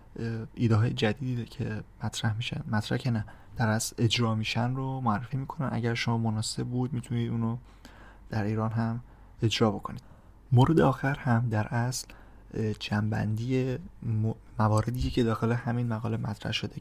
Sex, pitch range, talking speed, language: male, 105-125 Hz, 145 wpm, Persian